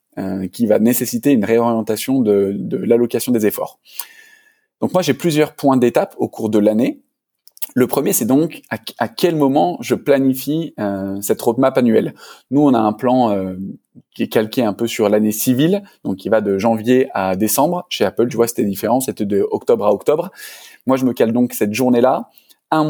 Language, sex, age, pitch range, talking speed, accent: French, male, 20-39, 110-145 Hz, 195 wpm, French